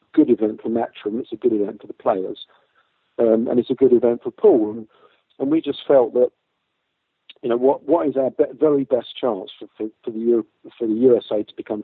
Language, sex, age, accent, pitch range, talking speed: English, male, 50-69, British, 110-155 Hz, 230 wpm